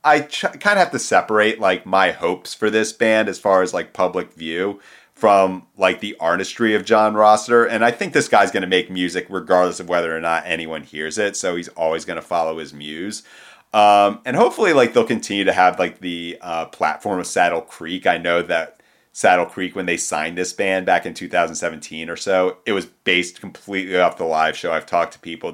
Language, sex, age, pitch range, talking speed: English, male, 30-49, 85-105 Hz, 215 wpm